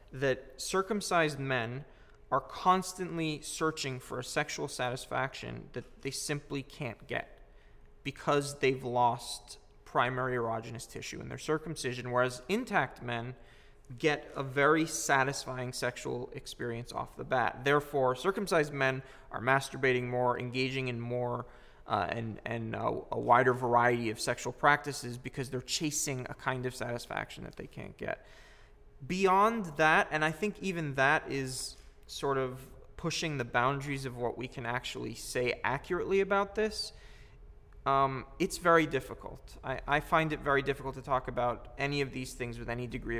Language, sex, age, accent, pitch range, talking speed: English, male, 20-39, American, 125-150 Hz, 150 wpm